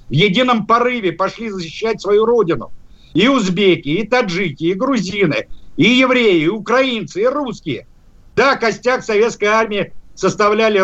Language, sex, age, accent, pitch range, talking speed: Russian, male, 50-69, native, 190-230 Hz, 135 wpm